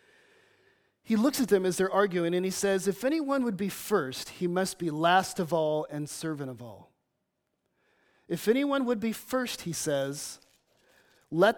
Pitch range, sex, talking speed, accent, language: 170-240 Hz, male, 170 wpm, American, English